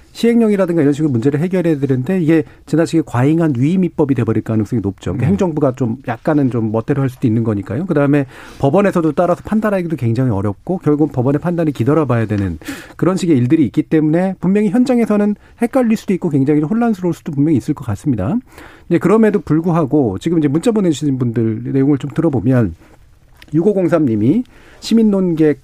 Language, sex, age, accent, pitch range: Korean, male, 40-59, native, 125-180 Hz